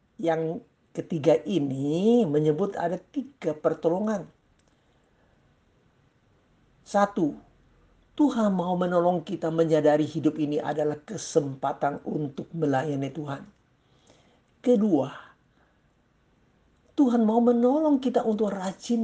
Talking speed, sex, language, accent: 85 wpm, male, Indonesian, native